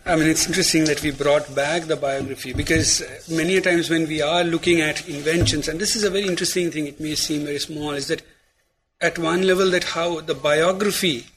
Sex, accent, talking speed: male, Indian, 215 wpm